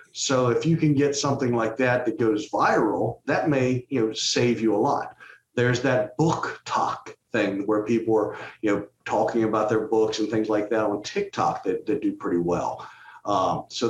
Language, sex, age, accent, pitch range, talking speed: English, male, 50-69, American, 110-140 Hz, 200 wpm